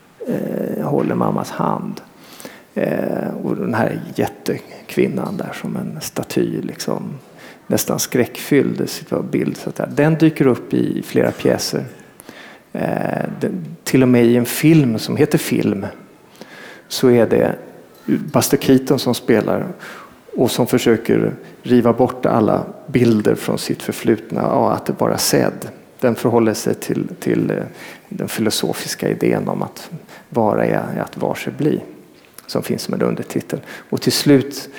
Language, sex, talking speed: Swedish, male, 135 wpm